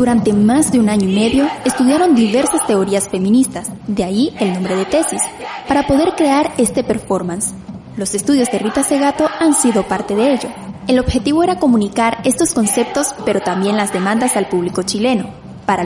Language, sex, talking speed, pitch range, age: Spanish, female, 175 wpm, 210-285 Hz, 10-29